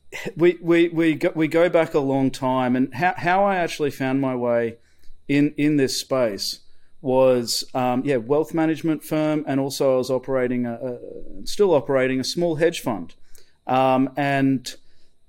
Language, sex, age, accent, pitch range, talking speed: English, male, 30-49, Australian, 130-160 Hz, 170 wpm